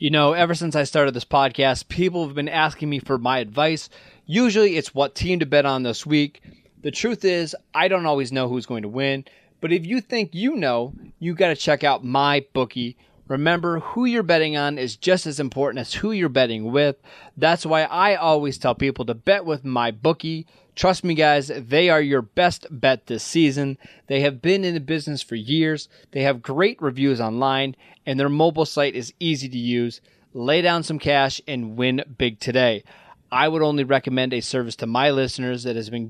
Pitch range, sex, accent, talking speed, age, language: 130-165 Hz, male, American, 210 wpm, 30-49, English